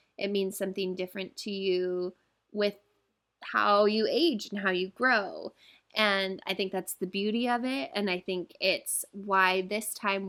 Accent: American